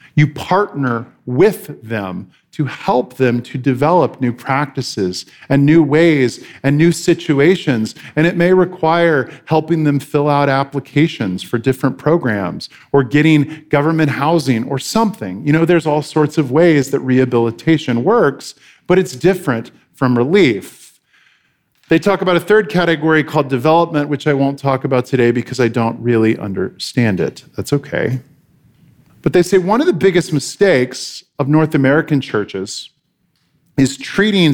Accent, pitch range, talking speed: American, 130-160 Hz, 150 wpm